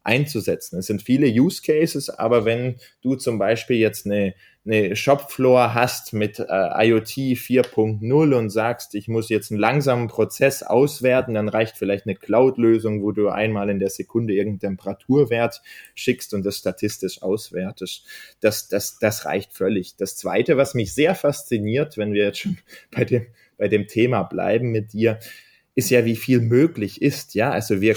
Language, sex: German, male